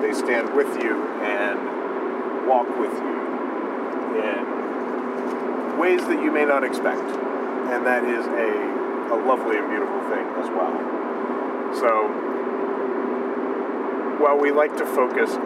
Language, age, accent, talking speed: English, 30-49, American, 125 wpm